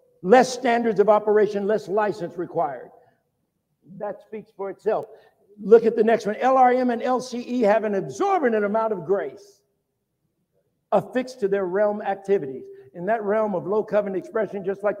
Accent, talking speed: American, 155 wpm